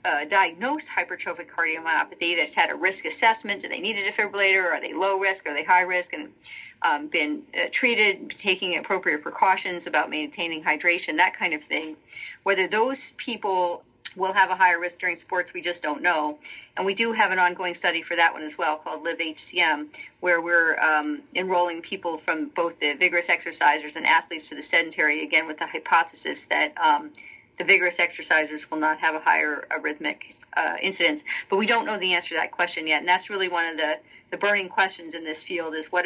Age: 40-59